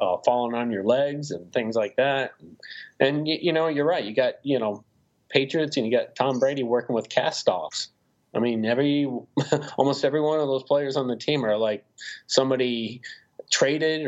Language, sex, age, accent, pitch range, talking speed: English, male, 30-49, American, 115-145 Hz, 190 wpm